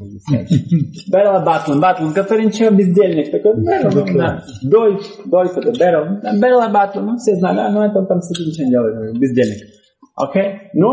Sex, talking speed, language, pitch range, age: male, 115 wpm, Russian, 115-185 Hz, 30-49